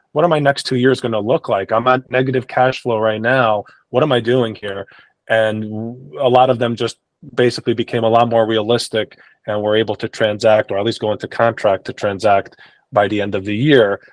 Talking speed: 225 wpm